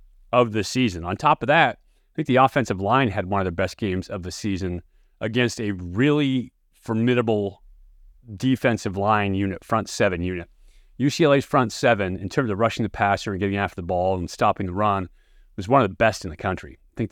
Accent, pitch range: American, 95-110 Hz